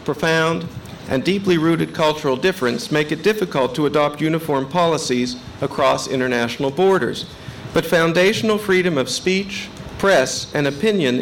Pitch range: 140-185 Hz